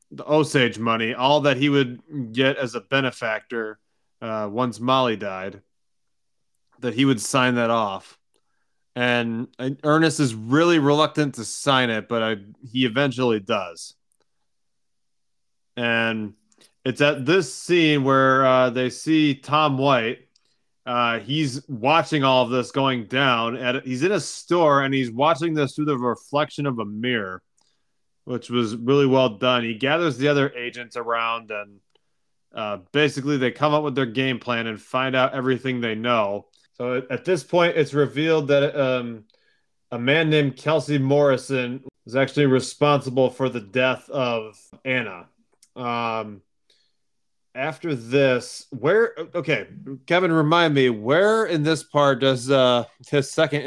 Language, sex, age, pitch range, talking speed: English, male, 20-39, 120-145 Hz, 145 wpm